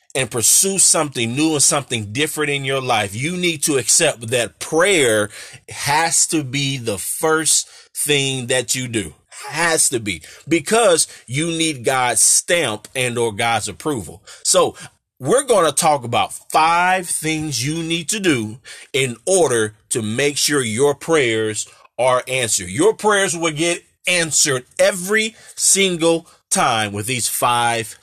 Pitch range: 125-170 Hz